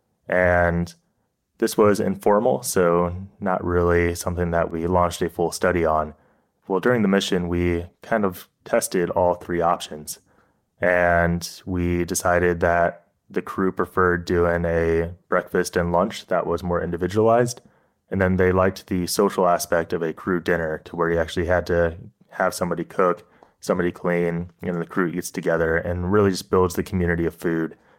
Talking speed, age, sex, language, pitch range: 165 wpm, 20-39, male, English, 85-95 Hz